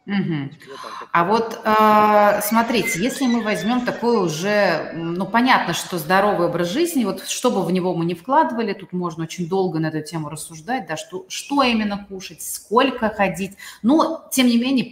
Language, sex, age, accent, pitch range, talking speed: Russian, female, 30-49, native, 165-230 Hz, 175 wpm